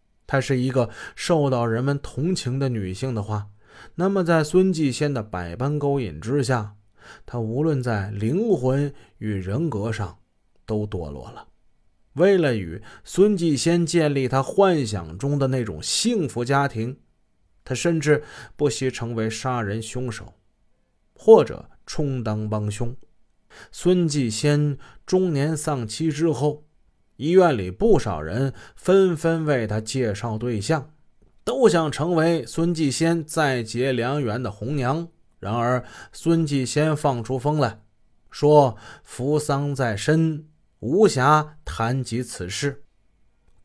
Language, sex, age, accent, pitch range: Chinese, male, 20-39, native, 110-155 Hz